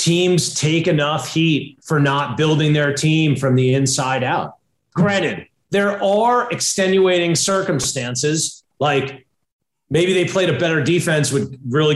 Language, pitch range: English, 140-190 Hz